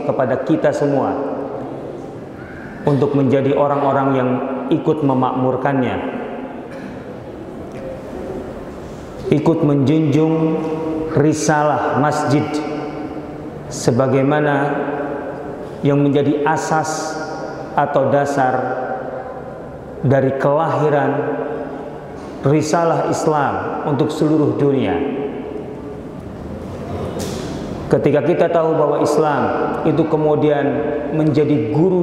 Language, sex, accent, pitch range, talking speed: Indonesian, male, native, 140-155 Hz, 65 wpm